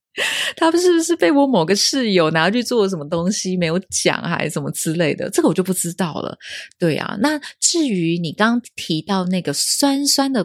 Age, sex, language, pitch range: 20-39, female, Chinese, 165-250 Hz